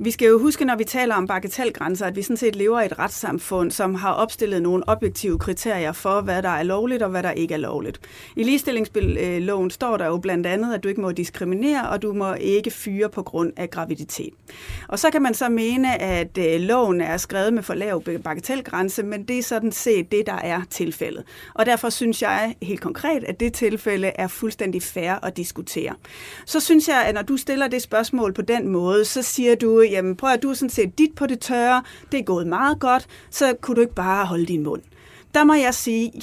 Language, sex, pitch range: Danish, female, 185-245 Hz